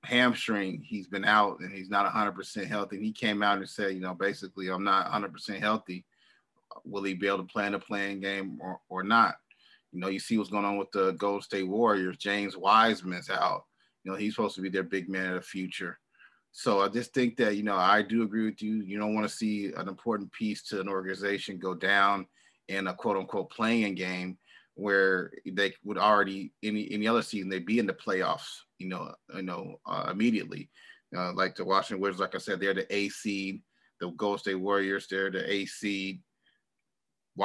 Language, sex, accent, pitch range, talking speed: English, male, American, 95-105 Hz, 215 wpm